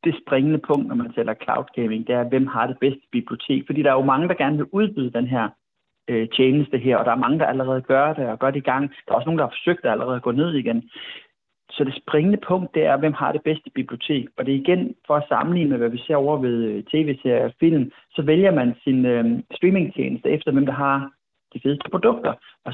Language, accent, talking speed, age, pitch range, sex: Danish, native, 245 wpm, 30-49, 125-155 Hz, male